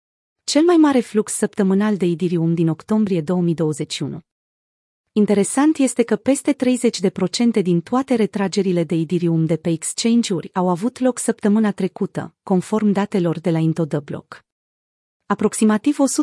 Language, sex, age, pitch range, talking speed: Romanian, female, 30-49, 175-225 Hz, 125 wpm